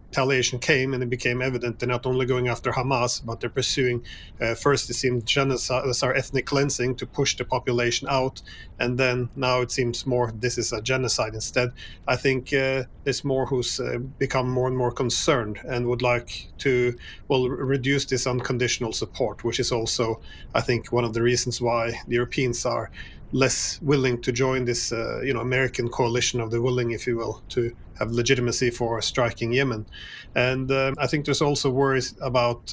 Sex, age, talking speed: male, 30-49, 190 wpm